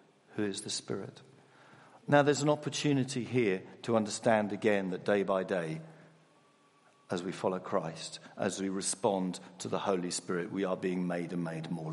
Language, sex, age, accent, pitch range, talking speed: English, male, 50-69, British, 95-120 Hz, 170 wpm